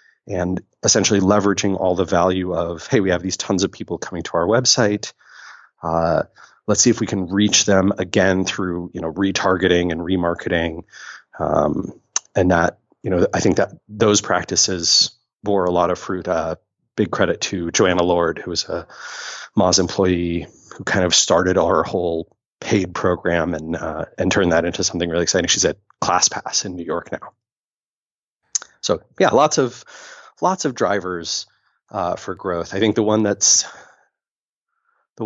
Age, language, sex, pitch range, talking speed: 30-49, English, male, 90-105 Hz, 170 wpm